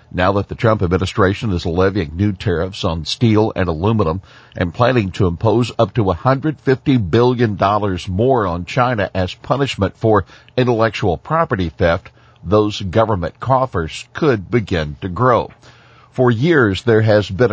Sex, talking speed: male, 145 wpm